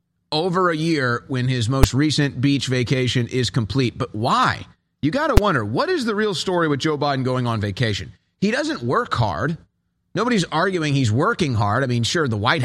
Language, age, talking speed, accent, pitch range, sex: English, 30-49, 200 wpm, American, 130-180 Hz, male